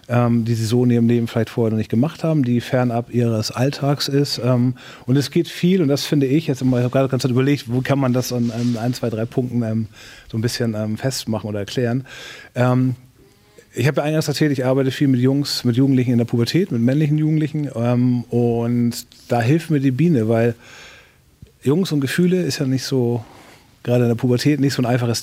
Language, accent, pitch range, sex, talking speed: German, German, 120-140 Hz, male, 210 wpm